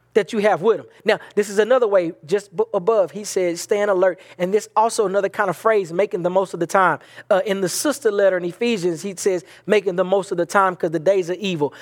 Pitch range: 190-265 Hz